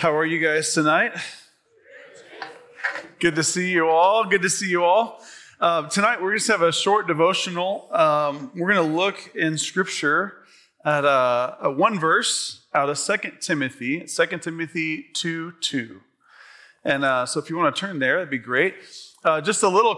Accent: American